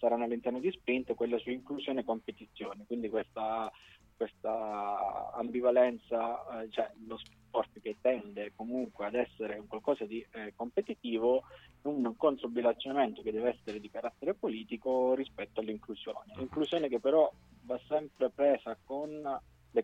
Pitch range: 110-125 Hz